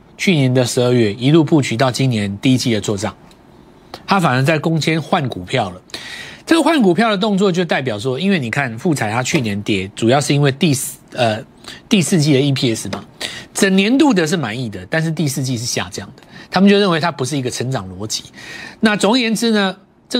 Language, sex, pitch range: Chinese, male, 115-170 Hz